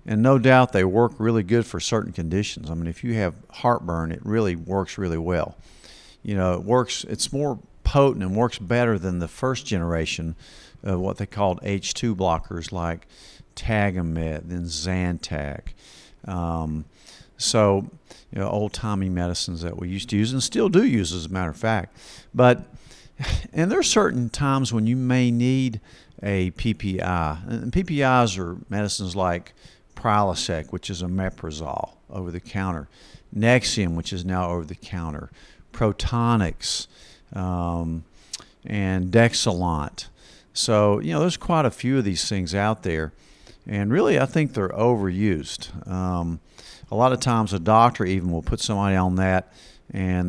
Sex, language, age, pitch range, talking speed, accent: male, English, 50-69, 90-115 Hz, 150 wpm, American